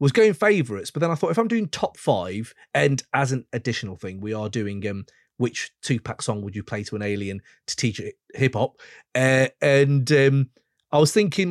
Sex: male